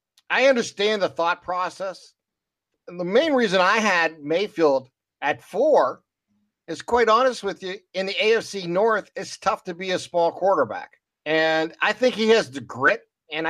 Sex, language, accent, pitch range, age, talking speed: male, English, American, 155-195 Hz, 50-69, 165 wpm